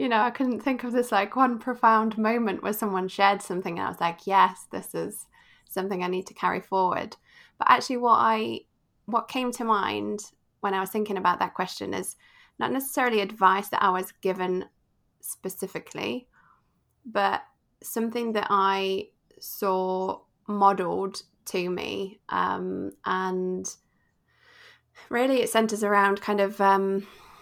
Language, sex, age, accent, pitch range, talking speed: English, female, 20-39, British, 190-220 Hz, 150 wpm